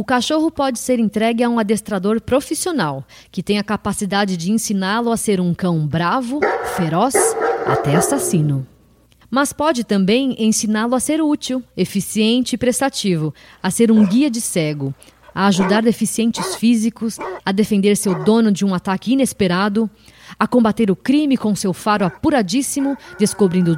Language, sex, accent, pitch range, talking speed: Portuguese, female, Brazilian, 185-255 Hz, 150 wpm